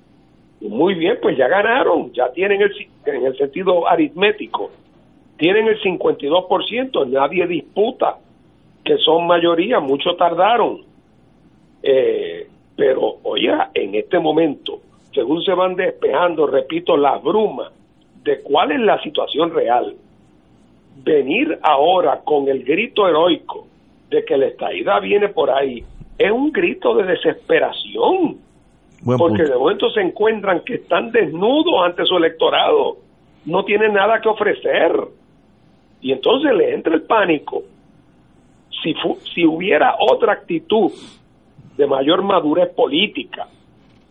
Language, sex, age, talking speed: Spanish, male, 50-69, 125 wpm